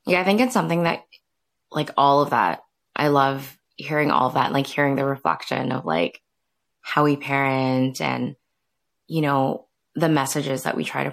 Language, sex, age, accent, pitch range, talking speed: English, female, 20-39, American, 135-175 Hz, 185 wpm